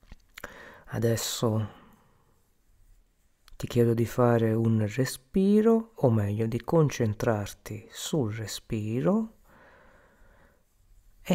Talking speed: 75 wpm